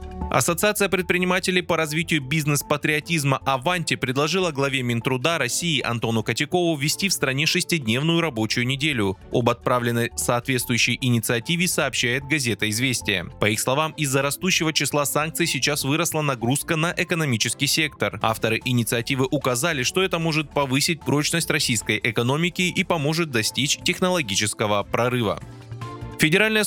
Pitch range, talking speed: 120-170 Hz, 120 wpm